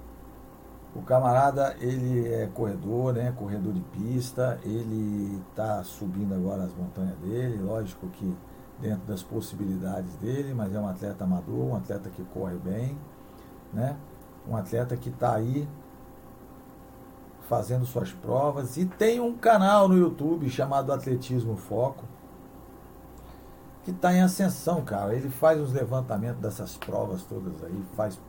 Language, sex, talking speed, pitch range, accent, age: Portuguese, male, 135 wpm, 95-130 Hz, Brazilian, 60-79